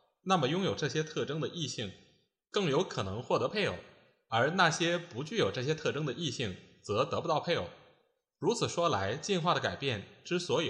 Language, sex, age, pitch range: Chinese, male, 20-39, 130-175 Hz